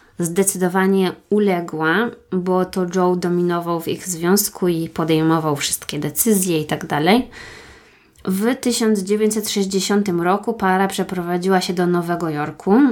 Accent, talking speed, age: native, 115 wpm, 20-39